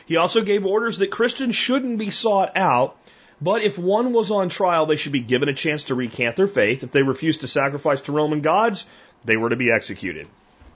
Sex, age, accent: male, 40-59, American